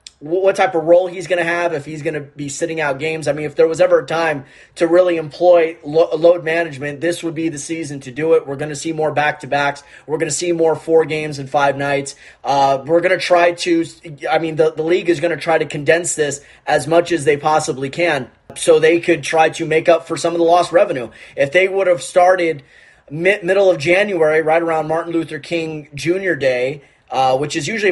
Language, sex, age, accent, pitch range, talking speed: English, male, 20-39, American, 150-175 Hz, 235 wpm